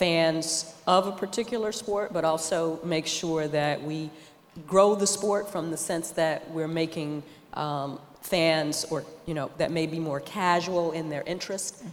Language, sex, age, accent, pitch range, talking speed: English, female, 40-59, American, 145-170 Hz, 165 wpm